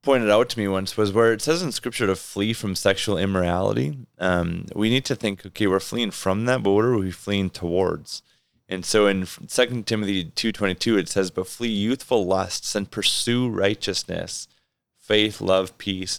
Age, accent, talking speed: 30-49, American, 195 wpm